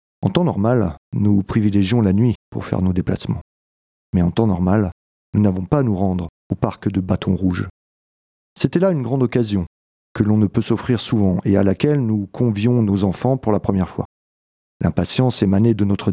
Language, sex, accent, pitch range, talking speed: French, male, French, 95-115 Hz, 195 wpm